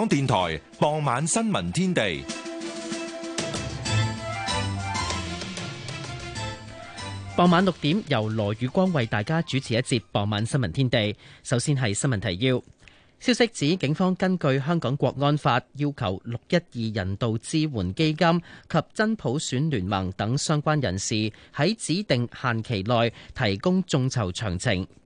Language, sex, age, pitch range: Chinese, male, 30-49, 110-155 Hz